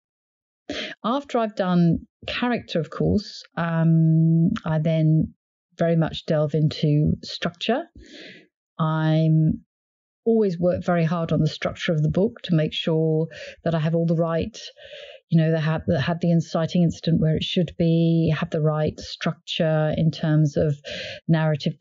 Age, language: 40-59, English